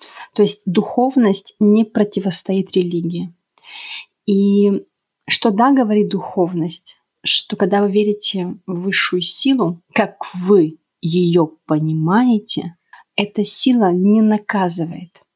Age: 30-49